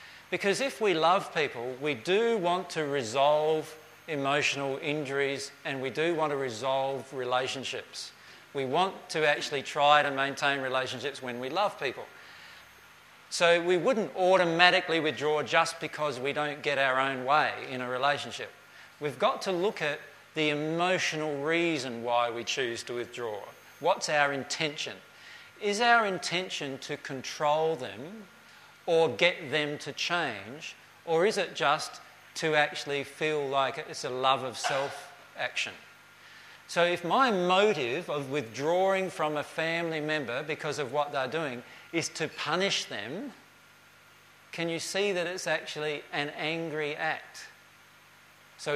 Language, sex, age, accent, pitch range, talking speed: English, male, 40-59, Australian, 140-170 Hz, 145 wpm